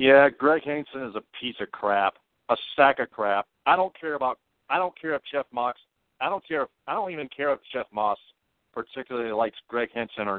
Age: 50-69